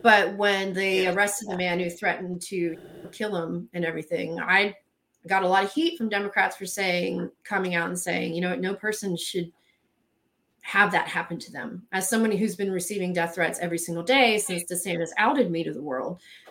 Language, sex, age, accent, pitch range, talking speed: English, female, 30-49, American, 180-235 Hz, 205 wpm